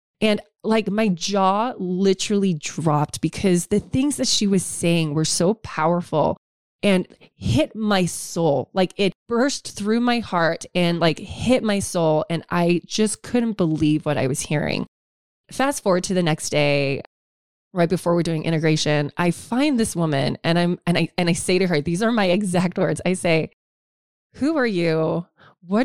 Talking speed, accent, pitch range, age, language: 175 wpm, American, 155-200 Hz, 20-39, English